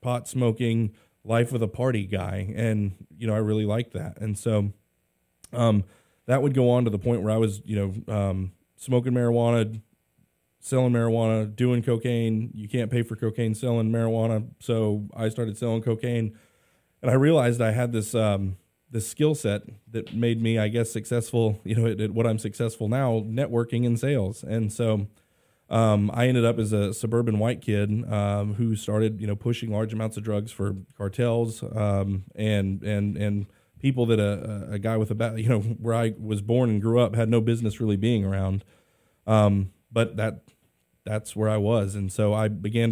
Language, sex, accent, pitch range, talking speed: English, male, American, 105-115 Hz, 190 wpm